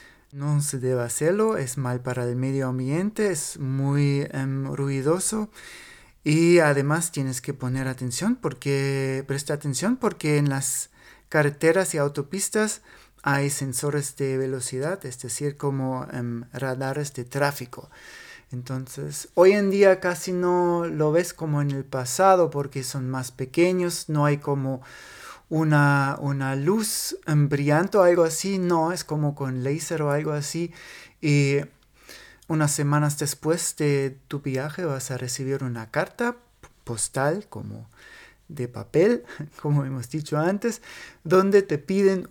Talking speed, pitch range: 135 wpm, 135-170 Hz